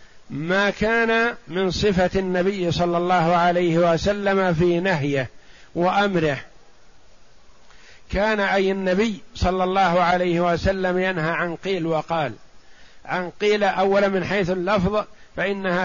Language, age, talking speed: Arabic, 50-69, 115 wpm